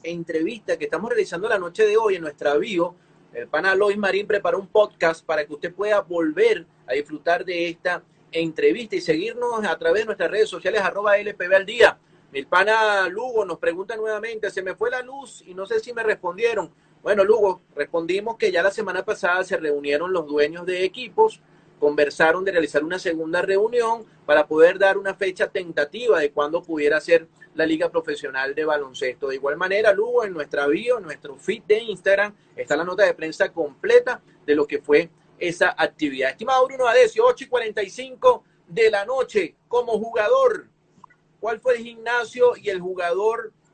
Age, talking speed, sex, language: 30-49, 185 wpm, male, Spanish